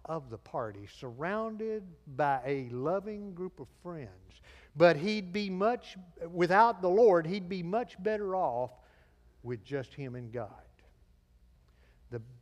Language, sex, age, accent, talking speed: English, male, 50-69, American, 135 wpm